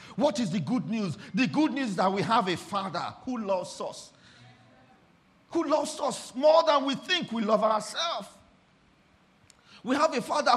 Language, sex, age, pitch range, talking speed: English, male, 50-69, 210-285 Hz, 175 wpm